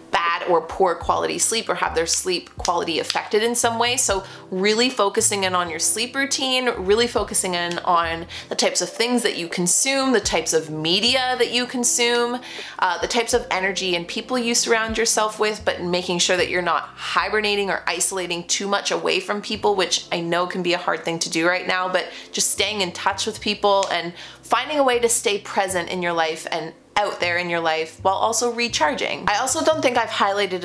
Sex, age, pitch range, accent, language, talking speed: female, 30-49, 170-225 Hz, American, English, 215 wpm